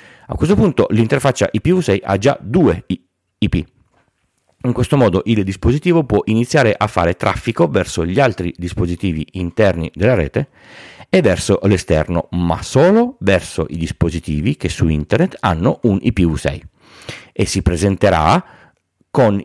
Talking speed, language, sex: 135 wpm, Italian, male